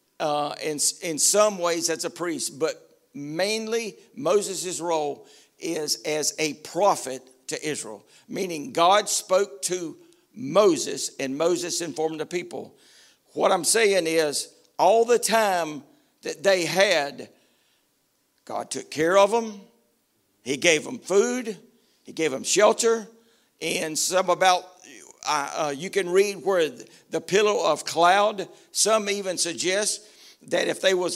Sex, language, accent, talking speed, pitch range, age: male, English, American, 135 wpm, 170-225 Hz, 60-79